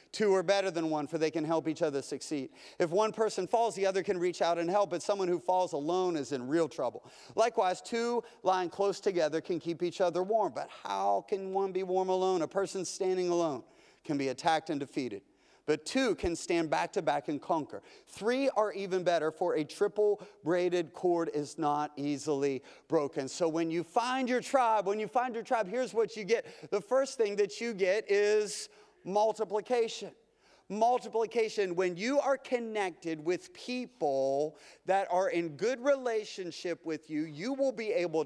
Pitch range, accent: 170-220 Hz, American